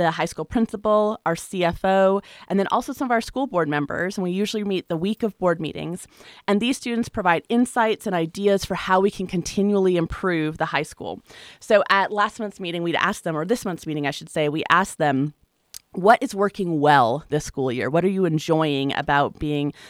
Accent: American